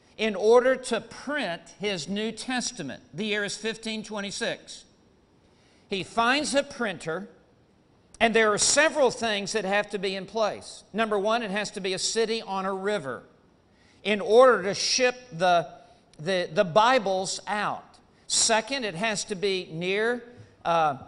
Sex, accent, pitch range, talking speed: male, American, 180-230 Hz, 150 wpm